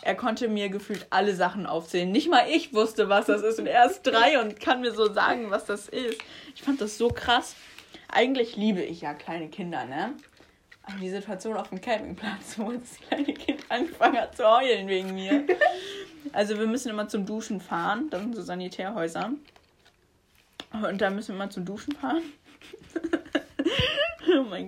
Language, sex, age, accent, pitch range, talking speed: German, female, 20-39, German, 195-260 Hz, 180 wpm